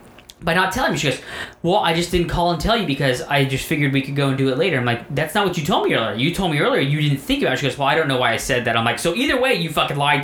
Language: English